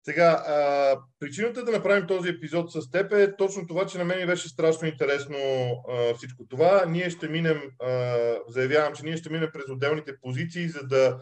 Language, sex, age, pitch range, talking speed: Bulgarian, male, 40-59, 135-170 Hz, 195 wpm